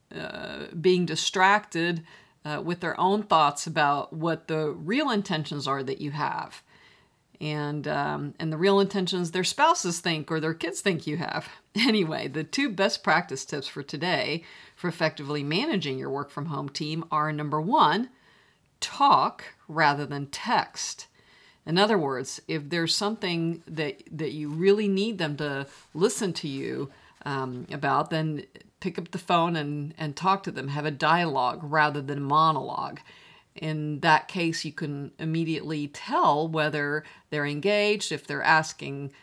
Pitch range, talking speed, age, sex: 150-185 Hz, 160 wpm, 50-69, female